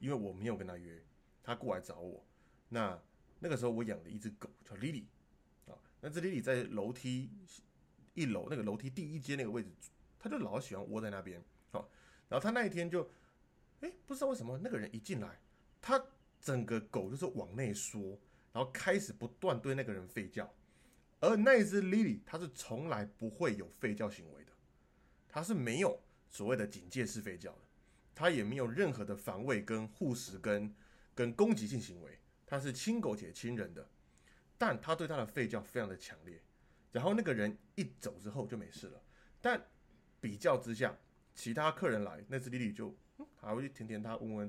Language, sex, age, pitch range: Chinese, male, 20-39, 100-135 Hz